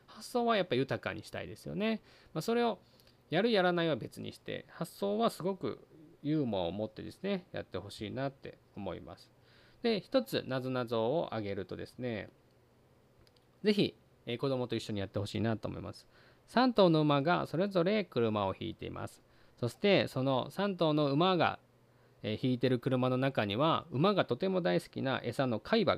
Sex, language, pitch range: male, Japanese, 115-180 Hz